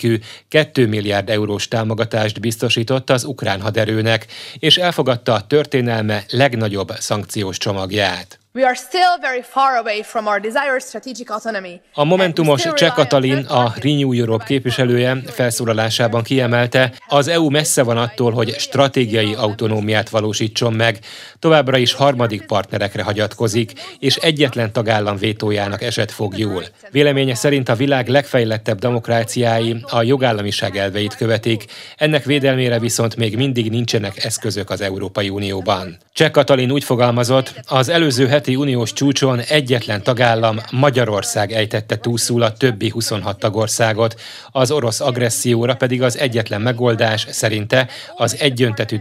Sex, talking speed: male, 120 wpm